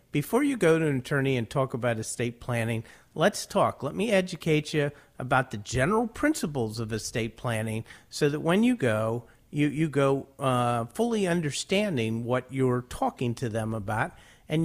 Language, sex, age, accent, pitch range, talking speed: English, male, 50-69, American, 120-150 Hz, 170 wpm